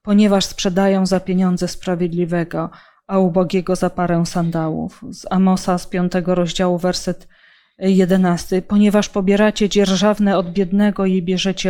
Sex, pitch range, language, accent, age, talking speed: female, 180-205 Hz, Polish, native, 20-39, 125 wpm